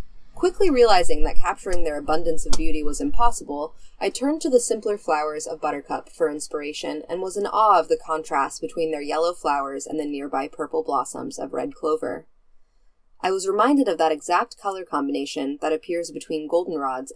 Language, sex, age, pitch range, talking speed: English, female, 20-39, 150-230 Hz, 180 wpm